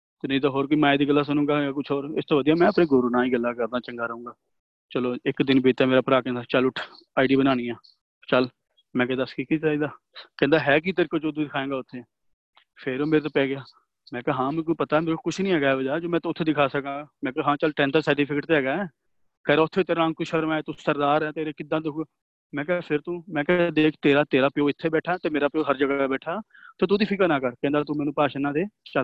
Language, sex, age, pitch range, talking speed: Punjabi, male, 30-49, 135-160 Hz, 230 wpm